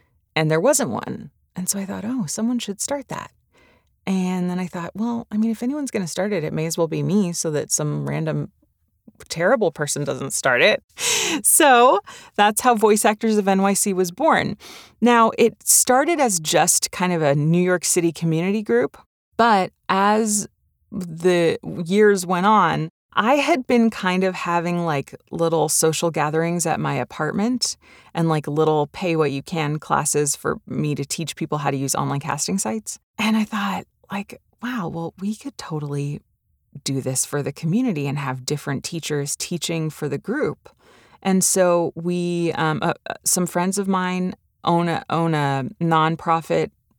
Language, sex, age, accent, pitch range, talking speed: English, female, 30-49, American, 155-210 Hz, 175 wpm